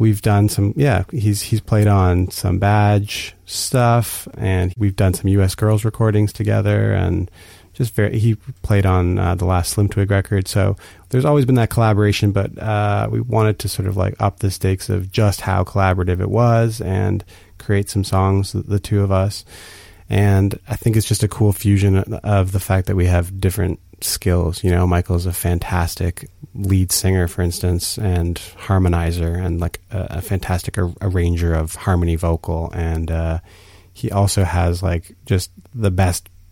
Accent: American